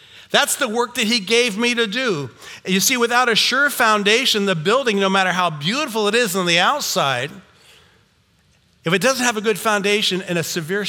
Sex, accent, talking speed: male, American, 200 wpm